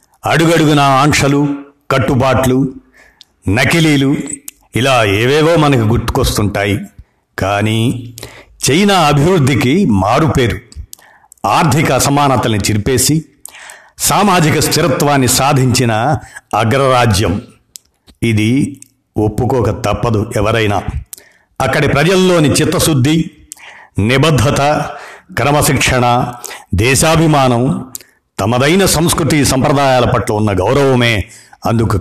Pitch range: 110-145 Hz